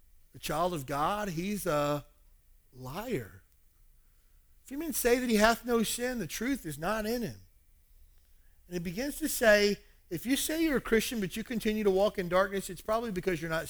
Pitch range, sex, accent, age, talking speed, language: 145-215 Hz, male, American, 40-59, 195 wpm, English